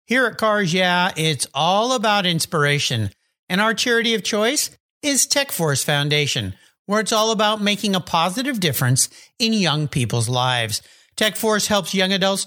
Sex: male